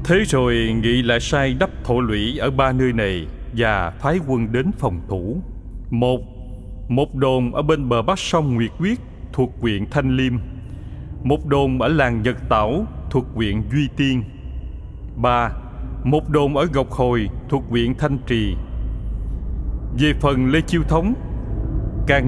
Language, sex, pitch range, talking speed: Vietnamese, male, 110-145 Hz, 155 wpm